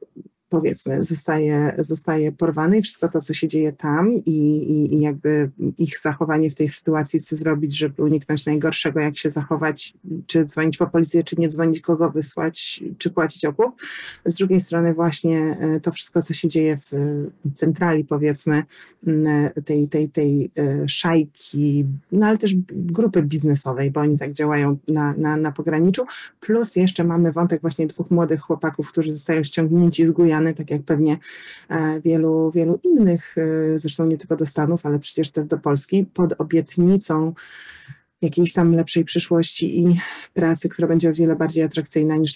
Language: Polish